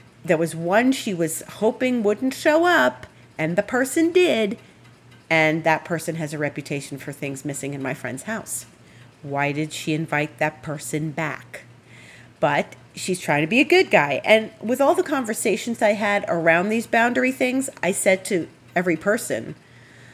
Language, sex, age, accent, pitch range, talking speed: English, female, 40-59, American, 150-215 Hz, 170 wpm